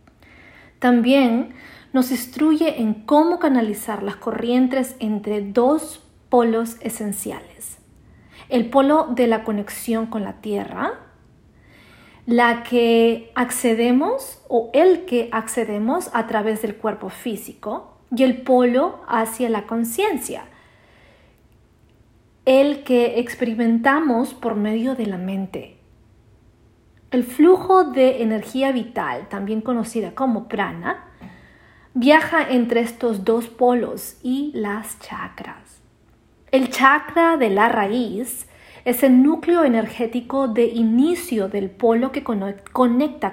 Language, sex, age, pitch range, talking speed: English, female, 40-59, 220-265 Hz, 110 wpm